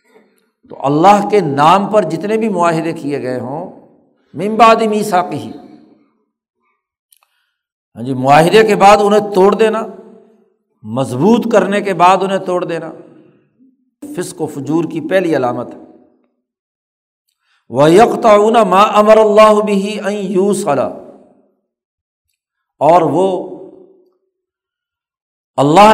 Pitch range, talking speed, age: 160-205 Hz, 110 wpm, 60-79